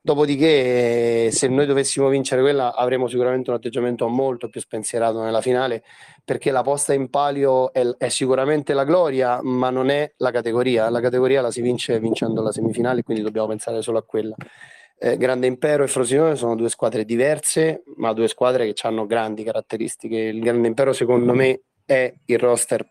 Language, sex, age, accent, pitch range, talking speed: Italian, male, 30-49, native, 115-130 Hz, 180 wpm